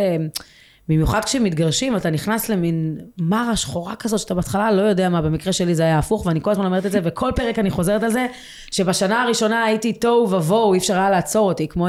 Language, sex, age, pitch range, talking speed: Hebrew, female, 20-39, 165-215 Hz, 205 wpm